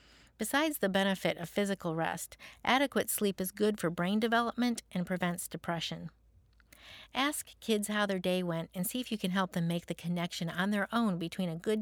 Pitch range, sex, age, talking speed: 175-215 Hz, female, 50-69, 195 wpm